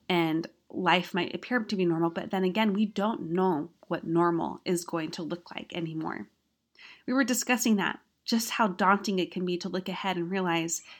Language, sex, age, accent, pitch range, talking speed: English, female, 30-49, American, 175-215 Hz, 195 wpm